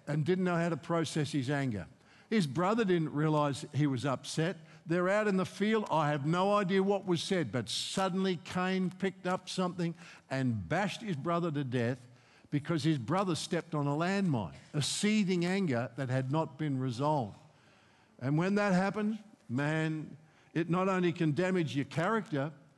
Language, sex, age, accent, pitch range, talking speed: English, male, 60-79, Australian, 135-180 Hz, 175 wpm